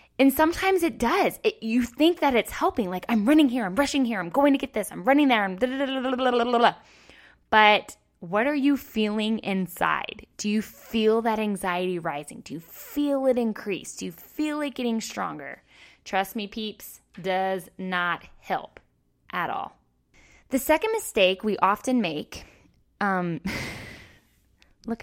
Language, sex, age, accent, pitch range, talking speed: English, female, 10-29, American, 190-245 Hz, 175 wpm